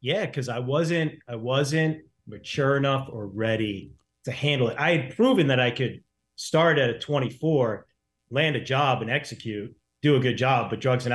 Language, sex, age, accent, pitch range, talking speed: English, male, 30-49, American, 115-140 Hz, 195 wpm